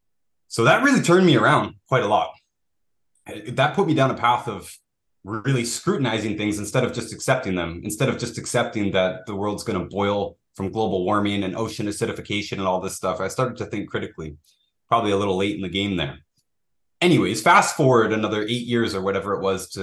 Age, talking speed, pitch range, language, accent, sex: 20-39, 205 wpm, 100-120 Hz, English, American, male